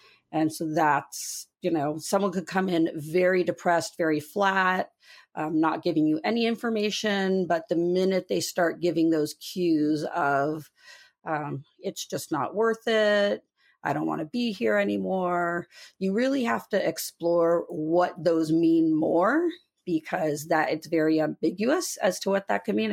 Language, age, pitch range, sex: English, 40-59, 160-200 Hz, female